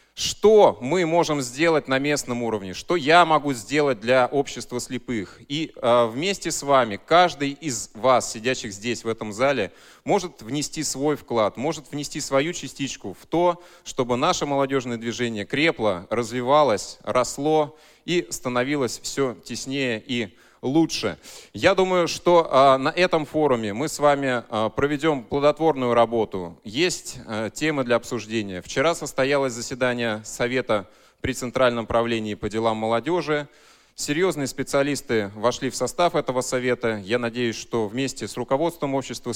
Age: 30-49